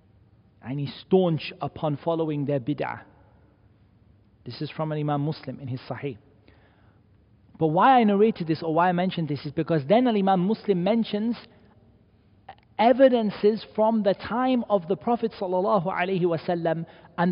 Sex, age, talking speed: male, 40-59, 145 wpm